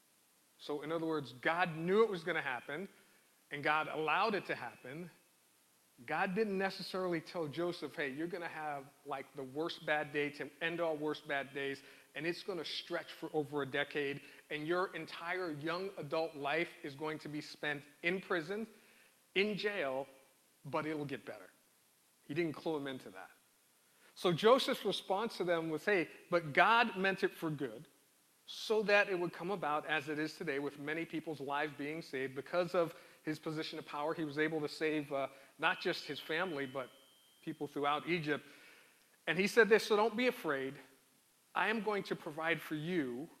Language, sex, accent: English, male, American